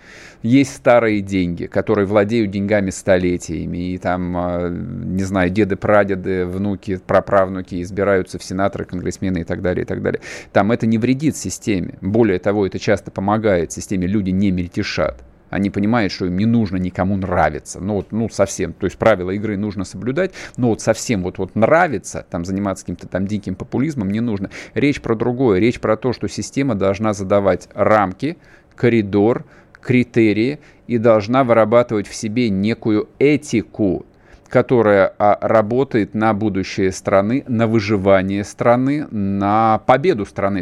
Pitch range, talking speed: 95-115 Hz, 150 wpm